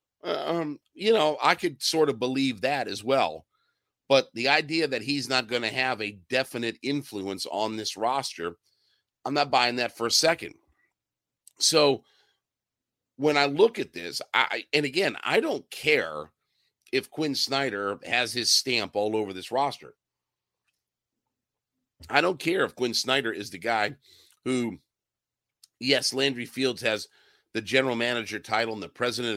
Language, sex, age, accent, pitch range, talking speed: English, male, 50-69, American, 115-145 Hz, 155 wpm